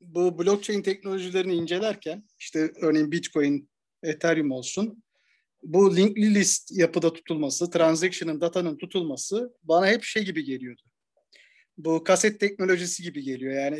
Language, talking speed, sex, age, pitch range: Turkish, 120 wpm, male, 50-69, 160-210 Hz